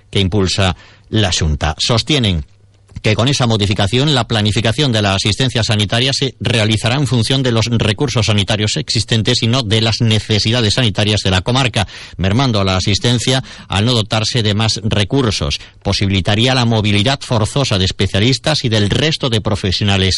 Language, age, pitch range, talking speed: Spanish, 40-59, 105-120 Hz, 160 wpm